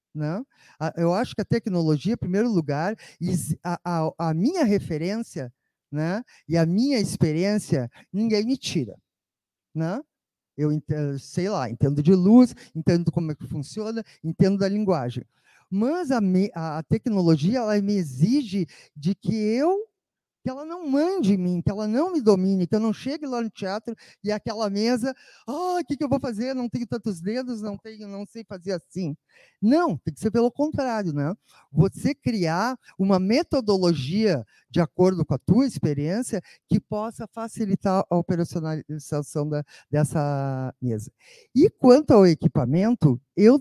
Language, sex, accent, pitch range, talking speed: Portuguese, male, Brazilian, 160-230 Hz, 165 wpm